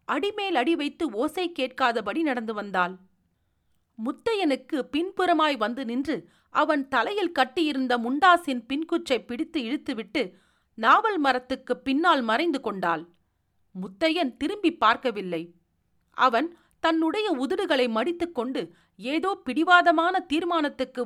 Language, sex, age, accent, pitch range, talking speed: Tamil, female, 40-59, native, 220-320 Hz, 95 wpm